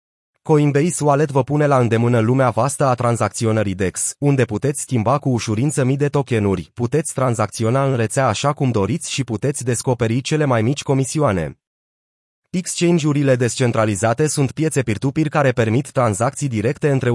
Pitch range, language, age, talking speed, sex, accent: 115-145 Hz, Romanian, 30-49, 150 wpm, male, native